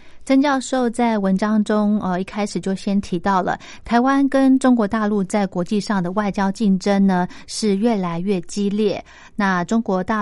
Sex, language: female, Chinese